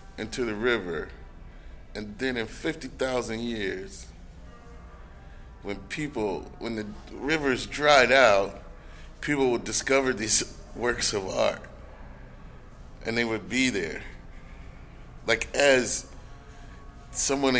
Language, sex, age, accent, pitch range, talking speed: English, male, 30-49, American, 75-120 Hz, 100 wpm